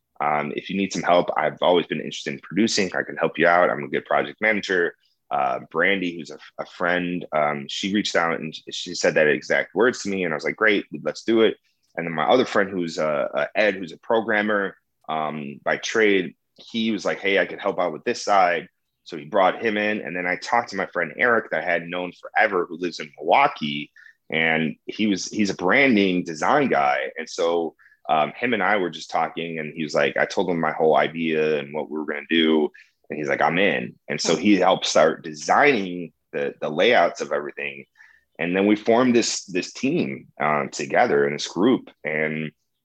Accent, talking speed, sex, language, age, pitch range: American, 225 wpm, male, English, 30-49, 75-95 Hz